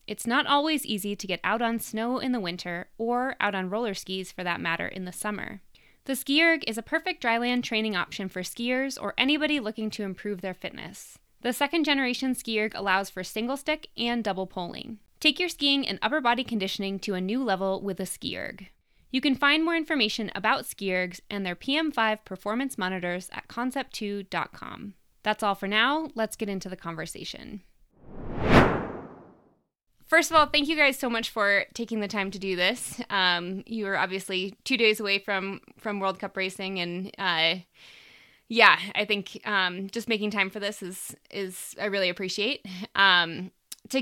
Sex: female